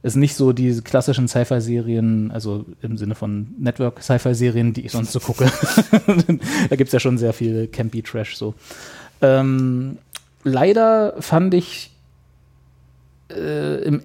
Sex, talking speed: male, 130 wpm